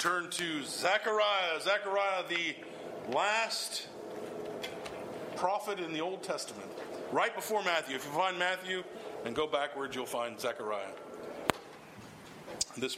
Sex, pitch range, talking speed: male, 150-200 Hz, 115 wpm